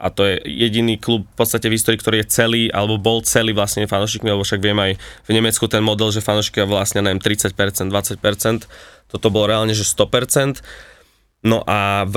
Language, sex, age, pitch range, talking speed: Slovak, male, 20-39, 100-110 Hz, 195 wpm